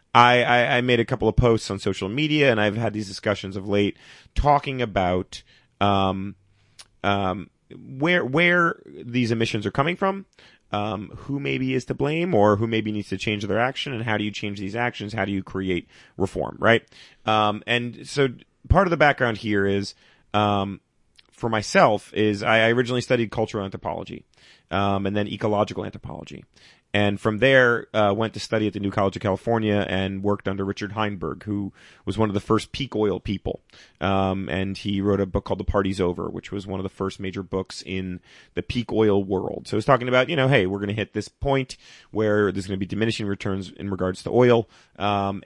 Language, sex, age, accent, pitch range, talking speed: English, male, 30-49, American, 100-120 Hz, 205 wpm